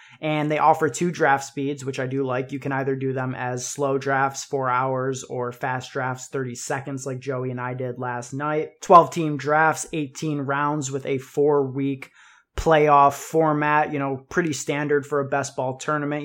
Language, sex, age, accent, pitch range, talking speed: English, male, 20-39, American, 130-150 Hz, 190 wpm